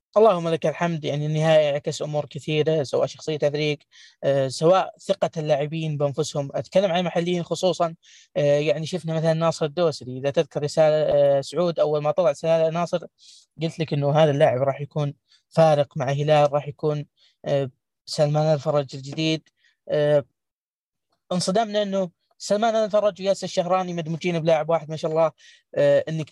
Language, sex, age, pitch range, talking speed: Arabic, female, 20-39, 150-175 Hz, 155 wpm